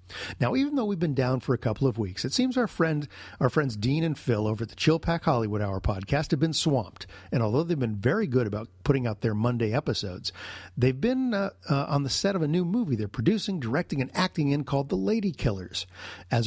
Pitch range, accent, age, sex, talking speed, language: 110-160 Hz, American, 50-69, male, 235 wpm, English